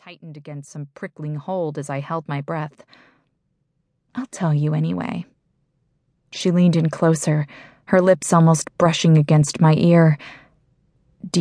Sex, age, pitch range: female, 20-39, 150-180 Hz